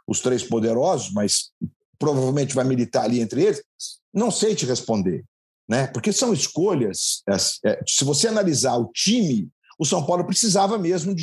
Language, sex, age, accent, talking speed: Portuguese, male, 50-69, Brazilian, 155 wpm